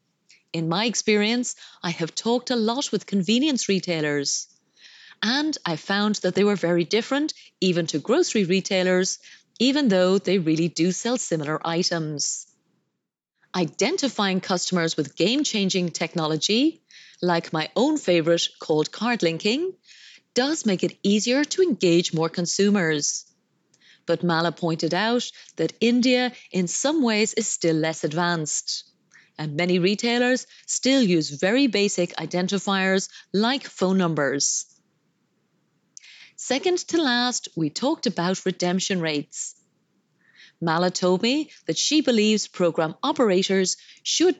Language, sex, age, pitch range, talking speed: English, female, 30-49, 170-240 Hz, 125 wpm